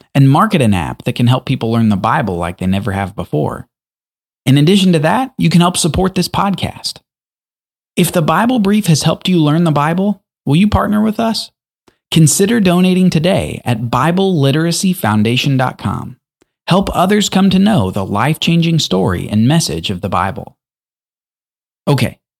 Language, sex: English, male